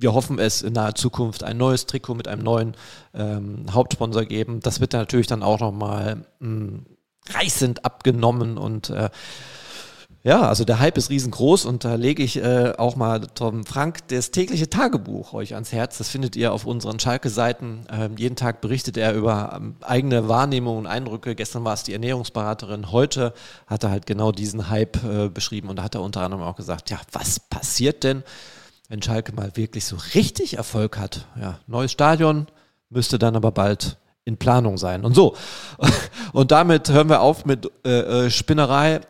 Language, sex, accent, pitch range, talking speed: German, male, German, 110-130 Hz, 180 wpm